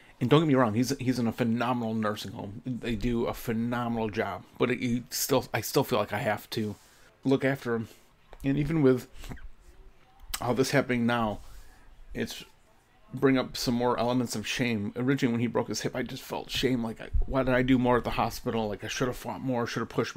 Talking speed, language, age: 220 wpm, English, 30-49